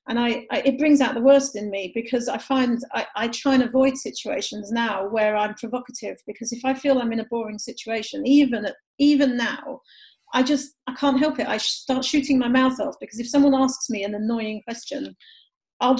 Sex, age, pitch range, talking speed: female, 40-59, 220-270 Hz, 210 wpm